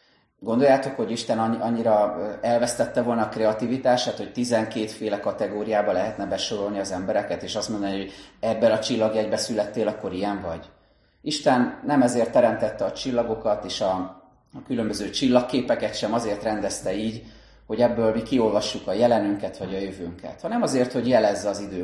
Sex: male